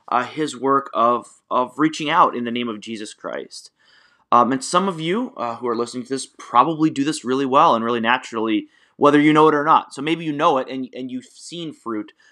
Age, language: 20-39, English